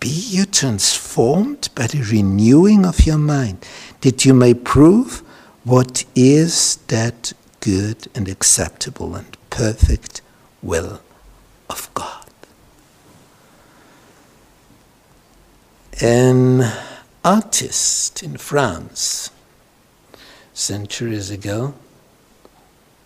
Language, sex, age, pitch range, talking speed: English, male, 60-79, 110-150 Hz, 80 wpm